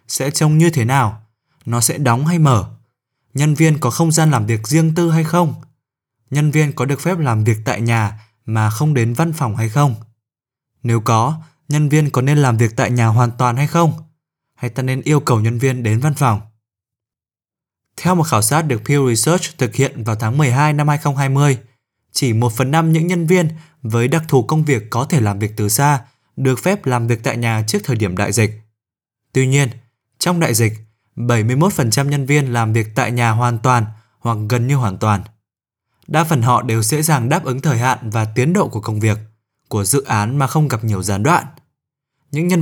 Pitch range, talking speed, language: 115-150 Hz, 210 wpm, Vietnamese